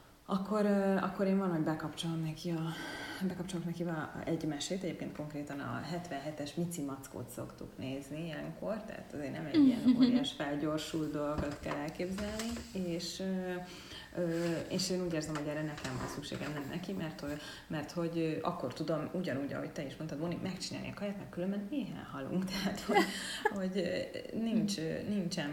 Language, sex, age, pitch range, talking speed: Hungarian, female, 30-49, 150-185 Hz, 155 wpm